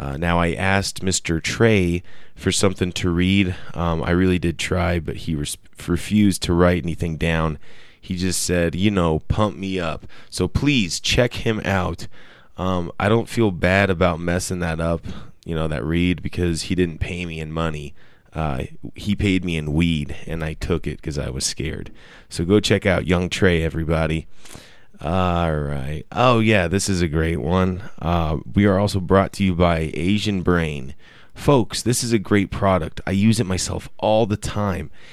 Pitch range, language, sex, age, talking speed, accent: 80-100 Hz, English, male, 20-39, 185 wpm, American